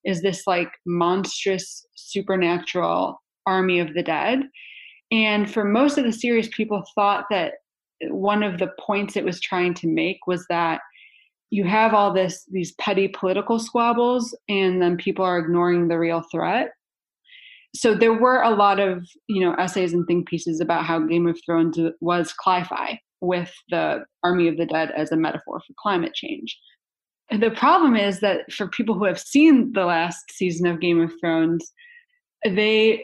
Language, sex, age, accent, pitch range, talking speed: English, female, 20-39, American, 175-230 Hz, 170 wpm